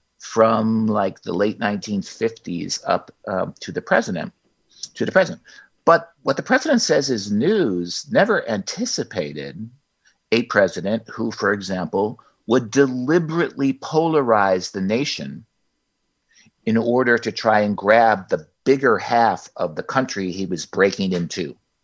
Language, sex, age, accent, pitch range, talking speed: English, male, 50-69, American, 105-160 Hz, 130 wpm